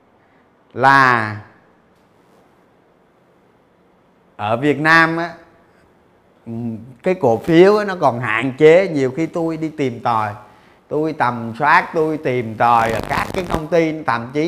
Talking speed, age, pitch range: 135 wpm, 30-49, 115-170 Hz